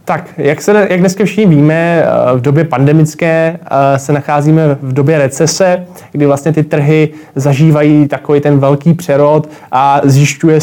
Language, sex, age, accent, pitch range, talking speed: Czech, male, 20-39, native, 140-155 Hz, 145 wpm